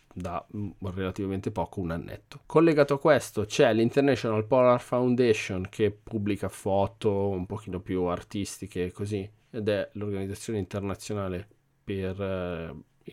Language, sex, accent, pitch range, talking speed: Italian, male, native, 105-135 Hz, 120 wpm